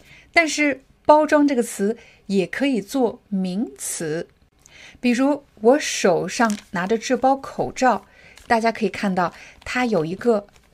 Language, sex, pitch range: Chinese, female, 195-255 Hz